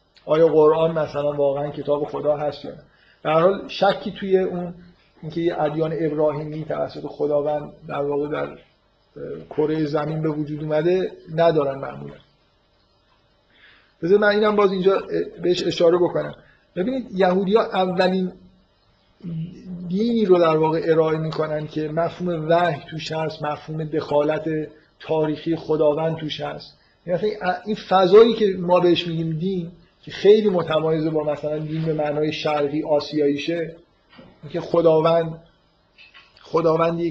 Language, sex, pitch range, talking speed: Persian, male, 150-175 Hz, 130 wpm